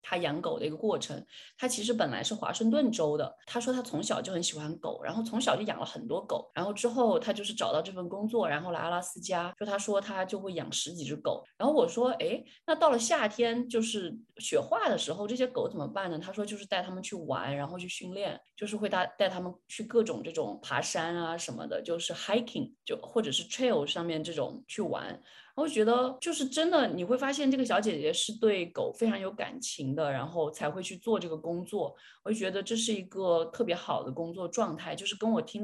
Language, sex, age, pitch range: Chinese, female, 20-39, 165-230 Hz